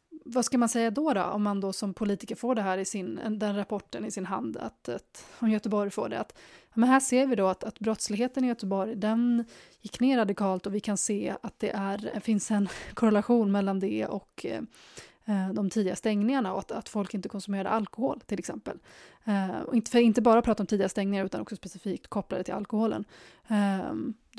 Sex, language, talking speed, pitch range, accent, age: female, Swedish, 210 wpm, 200-230 Hz, native, 20-39